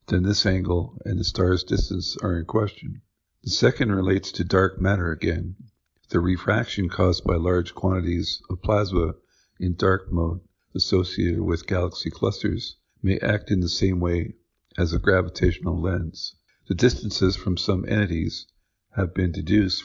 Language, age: English, 50-69